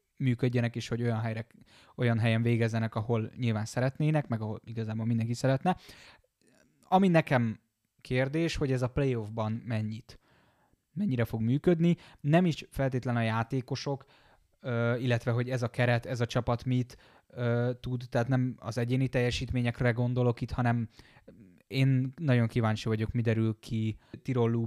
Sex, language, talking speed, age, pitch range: male, Hungarian, 140 wpm, 20-39, 115-130 Hz